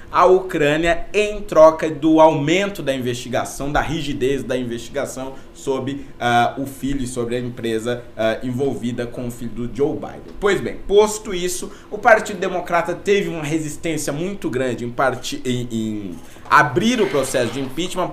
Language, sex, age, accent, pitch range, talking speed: Portuguese, male, 20-39, Brazilian, 125-185 Hz, 150 wpm